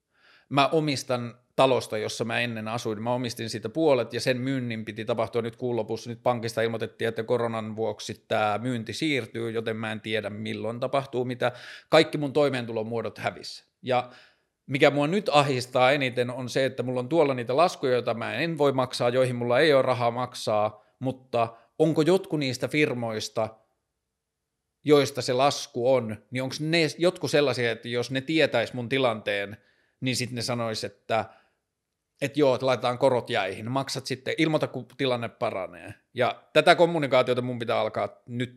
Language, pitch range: Finnish, 115-135 Hz